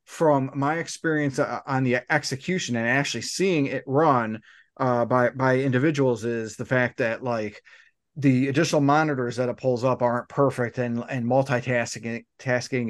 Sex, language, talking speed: male, English, 155 wpm